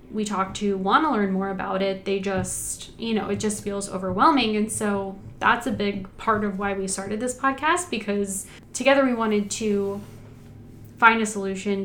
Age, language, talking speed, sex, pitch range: 10-29, English, 185 wpm, female, 195-225 Hz